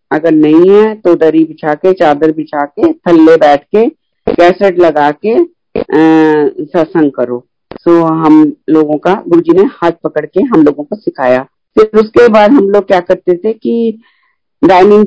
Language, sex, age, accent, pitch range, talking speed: Hindi, female, 50-69, native, 160-210 Hz, 165 wpm